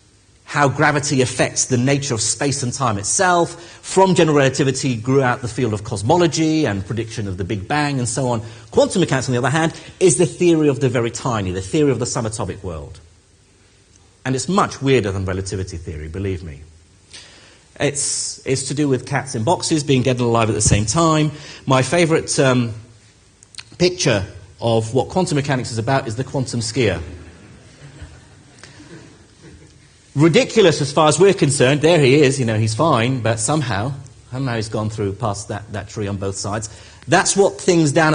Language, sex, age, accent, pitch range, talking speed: English, male, 40-59, British, 105-150 Hz, 180 wpm